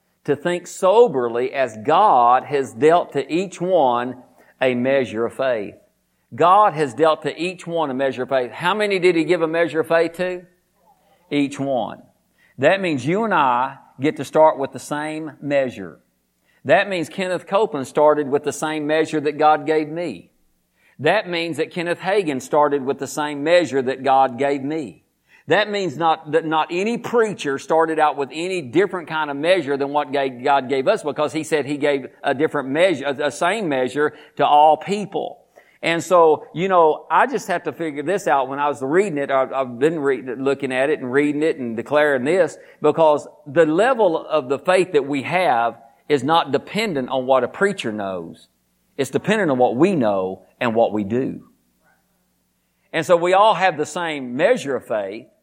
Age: 50-69